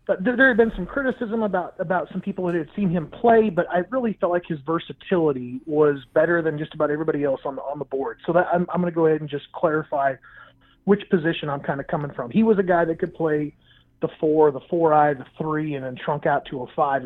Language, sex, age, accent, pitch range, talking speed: English, male, 30-49, American, 150-190 Hz, 255 wpm